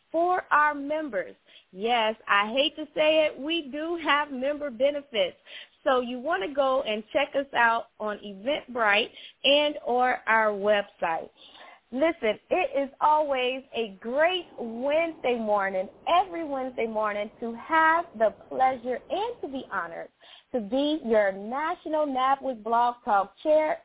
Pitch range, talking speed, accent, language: 230-310 Hz, 140 wpm, American, English